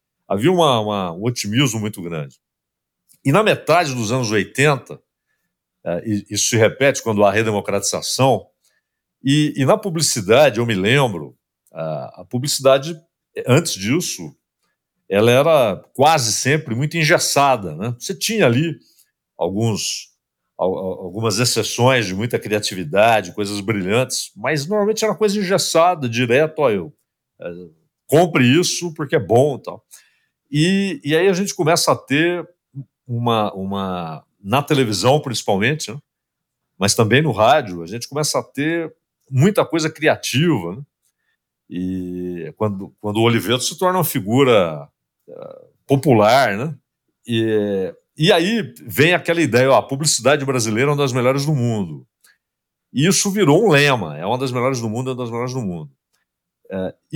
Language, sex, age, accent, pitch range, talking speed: Portuguese, male, 50-69, Brazilian, 110-160 Hz, 145 wpm